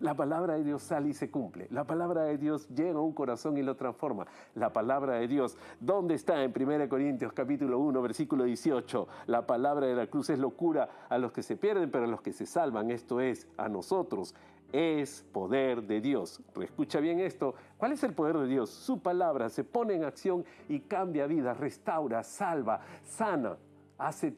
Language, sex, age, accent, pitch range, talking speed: Spanish, male, 50-69, Argentinian, 130-205 Hz, 195 wpm